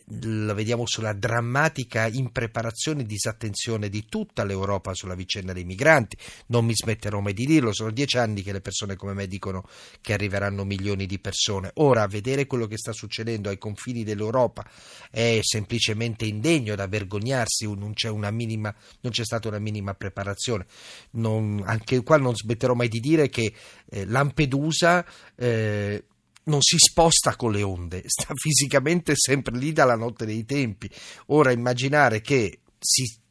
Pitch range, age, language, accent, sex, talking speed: 105-130 Hz, 40-59, Italian, native, male, 155 wpm